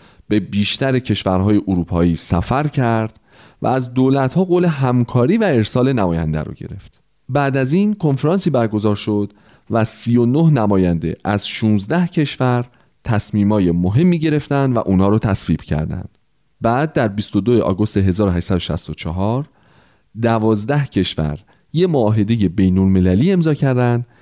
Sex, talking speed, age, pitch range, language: male, 120 wpm, 30-49, 100-140 Hz, Persian